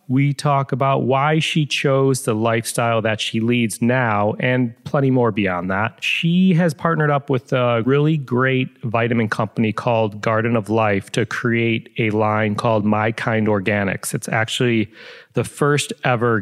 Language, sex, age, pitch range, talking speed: English, male, 30-49, 115-145 Hz, 160 wpm